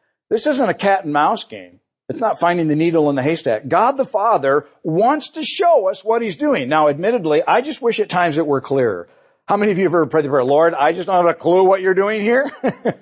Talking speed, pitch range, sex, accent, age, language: 255 wpm, 160-255 Hz, male, American, 60-79, English